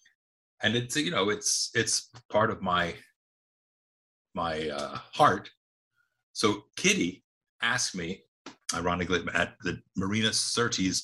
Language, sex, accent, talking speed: English, male, American, 115 wpm